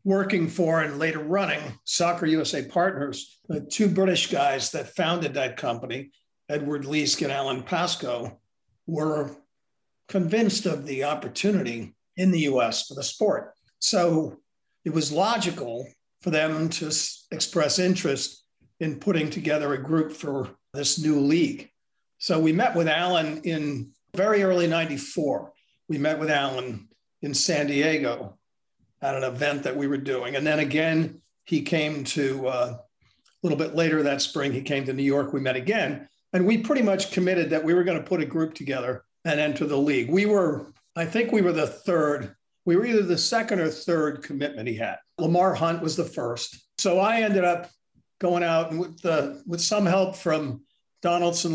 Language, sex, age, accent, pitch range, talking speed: English, male, 50-69, American, 140-175 Hz, 175 wpm